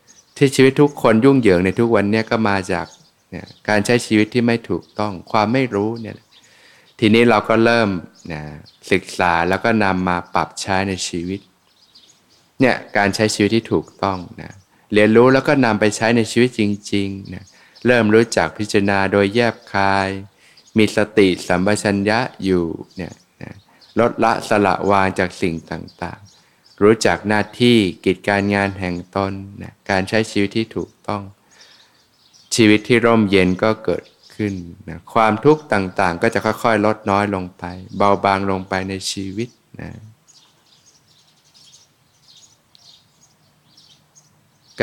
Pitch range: 95-115 Hz